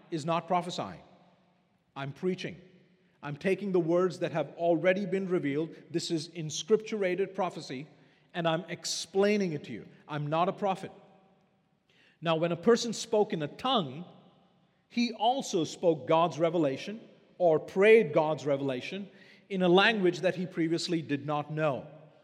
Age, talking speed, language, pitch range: 40-59, 145 wpm, English, 165-205 Hz